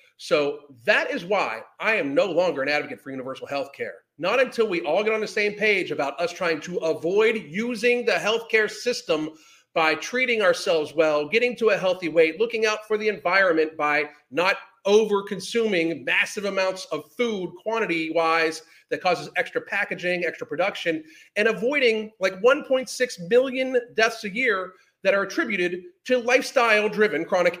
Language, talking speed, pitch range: English, 160 wpm, 170-230 Hz